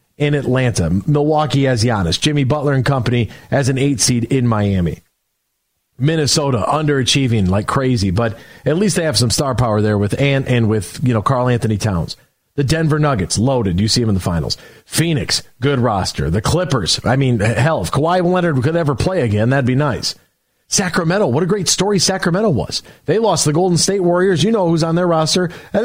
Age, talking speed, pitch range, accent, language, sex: 40-59, 195 wpm, 125-190 Hz, American, English, male